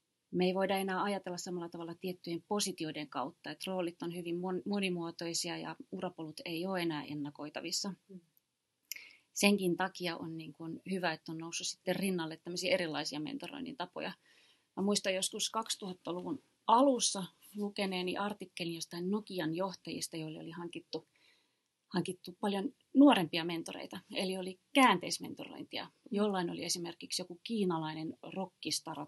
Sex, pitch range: female, 165-195 Hz